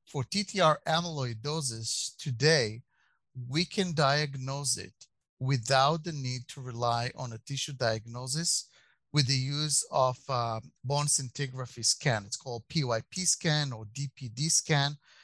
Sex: male